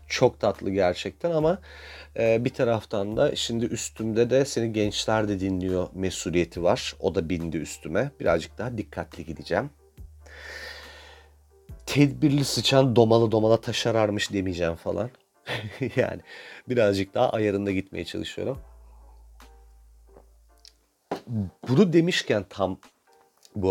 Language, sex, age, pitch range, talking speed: Turkish, male, 40-59, 85-115 Hz, 105 wpm